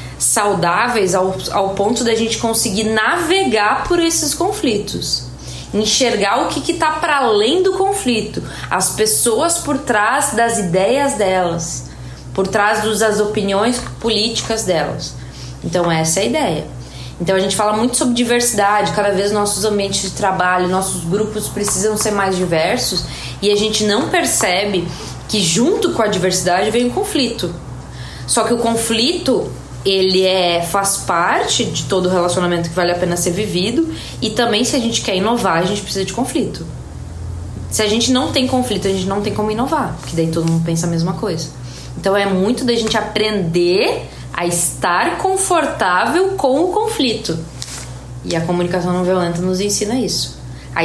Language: Portuguese